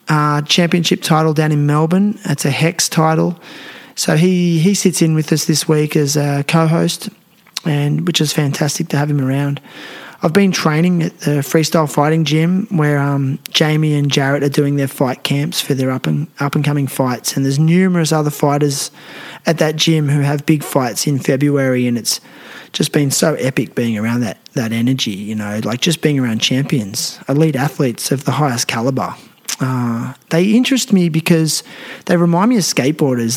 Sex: male